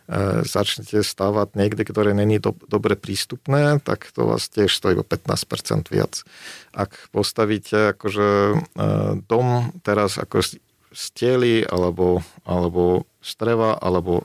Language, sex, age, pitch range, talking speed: Slovak, male, 40-59, 95-120 Hz, 120 wpm